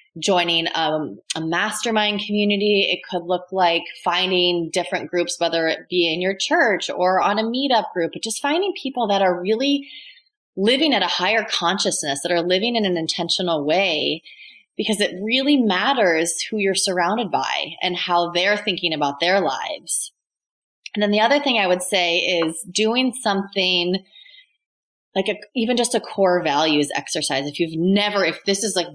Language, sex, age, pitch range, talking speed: English, female, 20-39, 170-210 Hz, 170 wpm